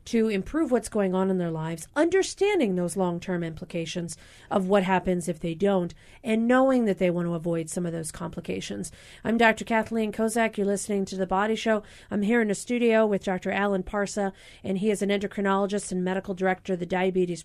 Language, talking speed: English, 205 wpm